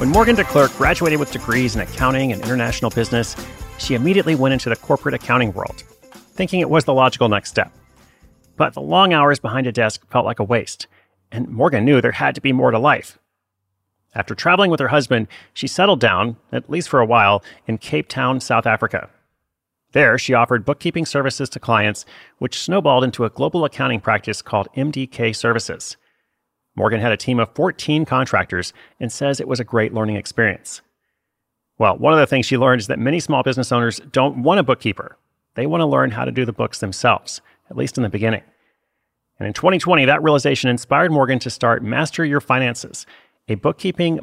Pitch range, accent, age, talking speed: 115-140 Hz, American, 30-49, 195 wpm